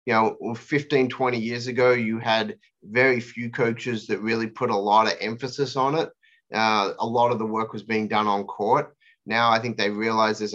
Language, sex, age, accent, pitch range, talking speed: English, male, 30-49, Australian, 110-130 Hz, 210 wpm